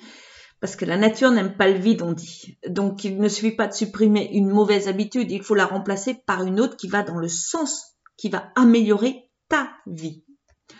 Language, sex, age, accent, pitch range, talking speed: French, female, 40-59, French, 190-230 Hz, 205 wpm